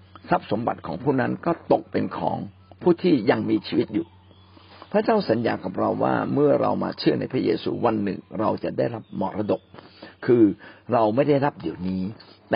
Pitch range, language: 105-145 Hz, Thai